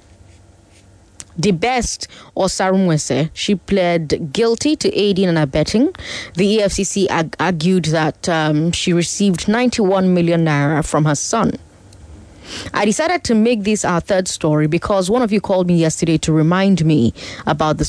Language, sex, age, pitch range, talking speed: English, female, 30-49, 155-235 Hz, 150 wpm